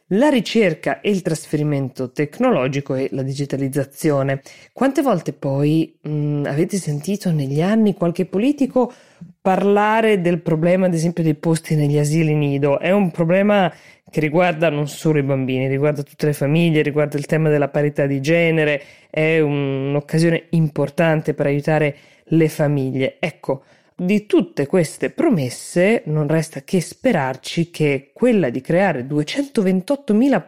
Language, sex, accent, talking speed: Italian, female, native, 135 wpm